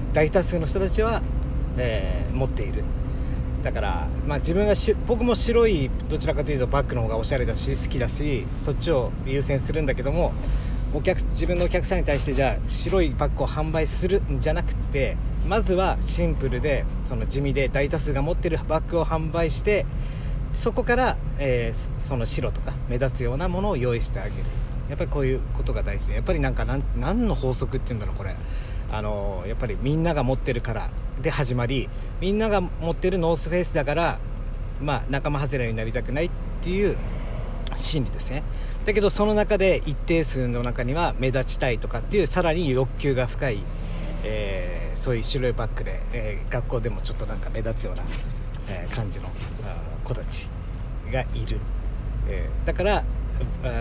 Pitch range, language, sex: 110-155 Hz, Japanese, male